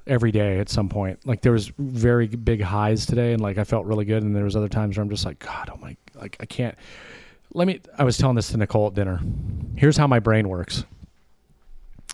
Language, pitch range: English, 95-120 Hz